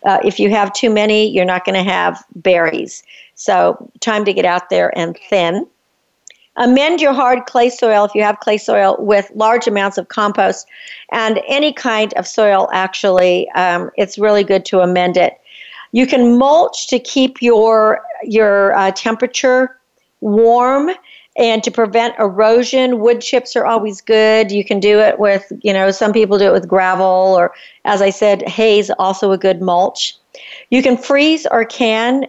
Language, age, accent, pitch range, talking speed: English, 50-69, American, 200-245 Hz, 175 wpm